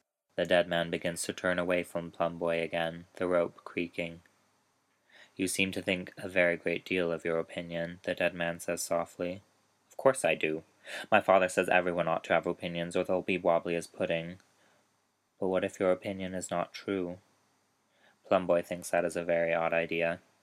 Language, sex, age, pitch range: English, male, 20-39, 85-95 Hz